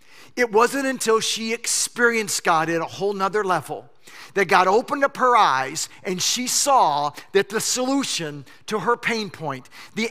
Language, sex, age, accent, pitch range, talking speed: English, male, 40-59, American, 190-270 Hz, 165 wpm